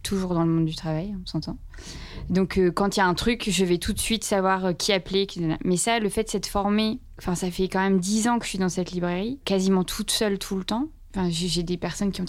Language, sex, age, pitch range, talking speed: French, female, 20-39, 175-195 Hz, 275 wpm